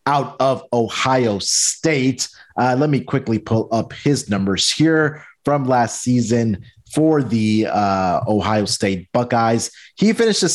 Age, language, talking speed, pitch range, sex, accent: 30-49, English, 140 wpm, 110-135 Hz, male, American